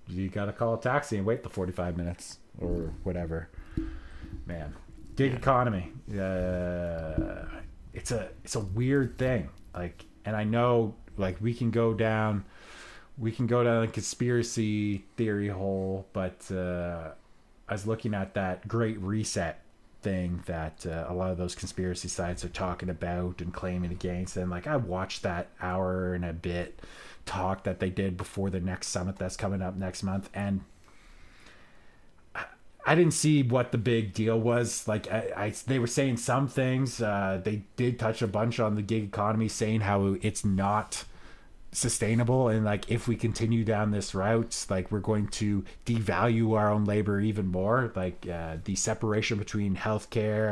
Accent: American